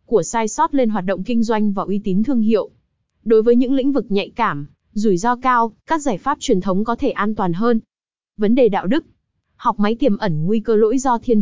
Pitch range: 200-255 Hz